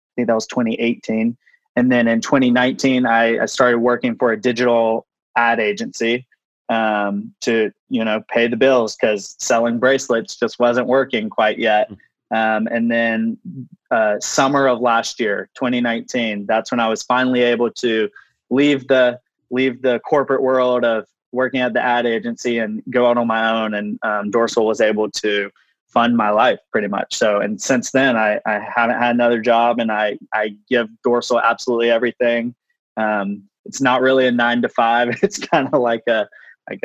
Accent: American